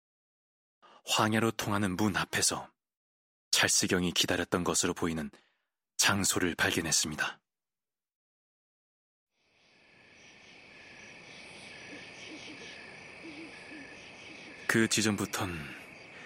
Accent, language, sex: native, Korean, male